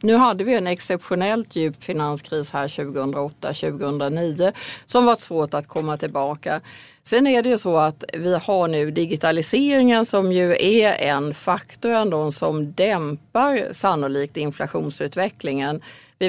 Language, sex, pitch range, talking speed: Swedish, female, 155-195 Hz, 135 wpm